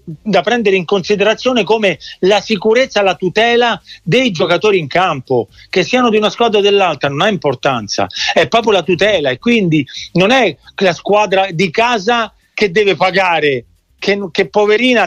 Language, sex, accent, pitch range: Italian, male, native, 165-220 Hz